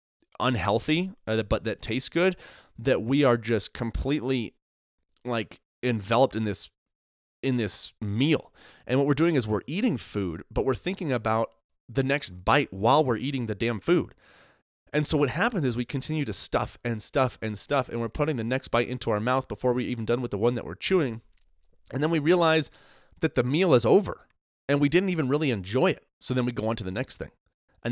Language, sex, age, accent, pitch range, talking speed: English, male, 30-49, American, 105-130 Hz, 210 wpm